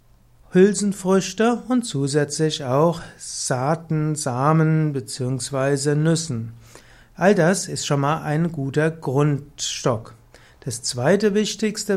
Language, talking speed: German, 95 wpm